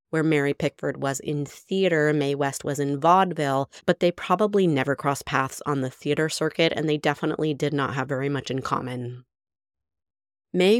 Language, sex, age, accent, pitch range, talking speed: English, female, 30-49, American, 135-165 Hz, 180 wpm